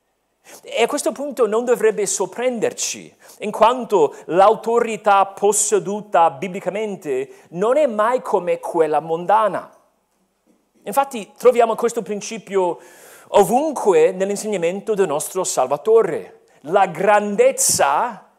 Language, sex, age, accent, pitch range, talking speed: Italian, male, 40-59, native, 195-250 Hz, 95 wpm